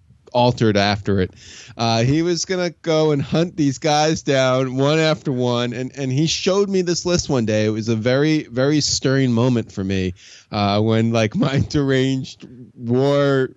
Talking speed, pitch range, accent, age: 180 wpm, 125-160 Hz, American, 20-39